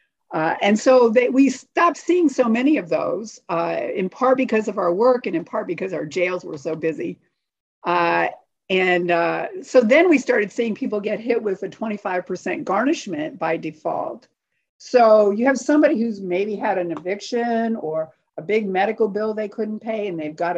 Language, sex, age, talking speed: English, female, 50-69, 185 wpm